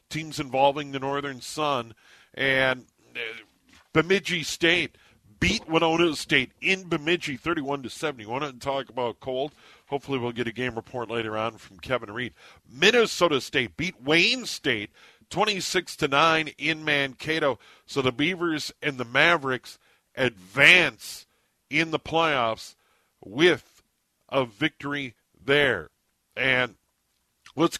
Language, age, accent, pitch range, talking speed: English, 50-69, American, 130-165 Hz, 120 wpm